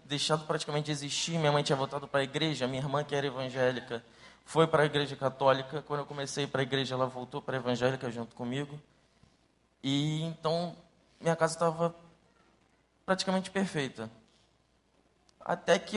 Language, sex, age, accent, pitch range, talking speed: Portuguese, male, 20-39, Brazilian, 130-170 Hz, 160 wpm